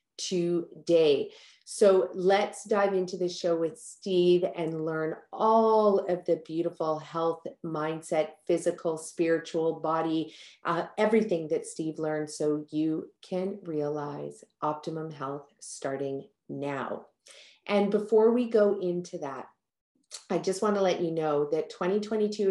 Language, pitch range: English, 160-190 Hz